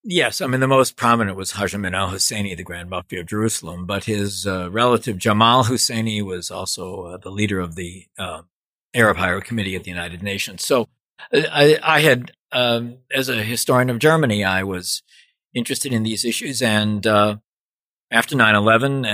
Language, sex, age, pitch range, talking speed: English, male, 40-59, 95-115 Hz, 170 wpm